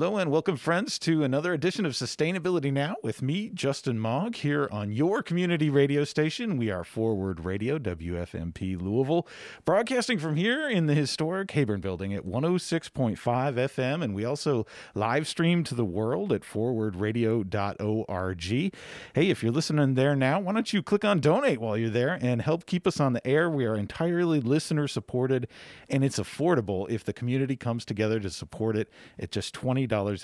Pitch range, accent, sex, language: 105-155 Hz, American, male, English